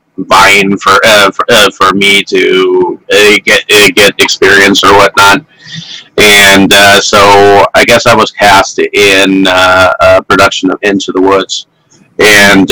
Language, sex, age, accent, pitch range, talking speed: English, male, 40-59, American, 100-135 Hz, 150 wpm